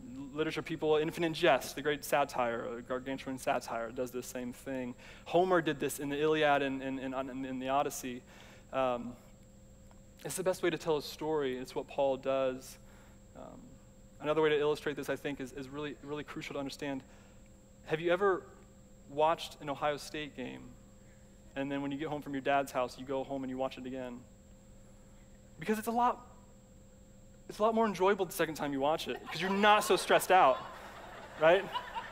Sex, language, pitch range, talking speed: male, English, 135-190 Hz, 190 wpm